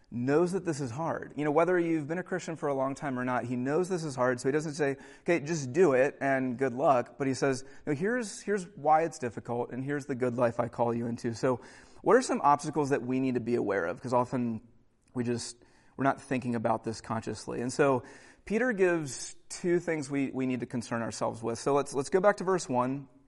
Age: 30-49